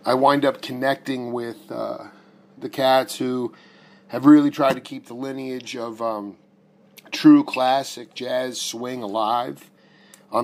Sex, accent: male, American